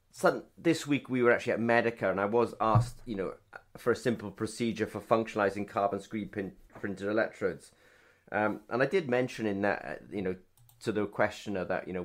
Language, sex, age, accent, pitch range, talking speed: English, male, 30-49, British, 95-115 Hz, 200 wpm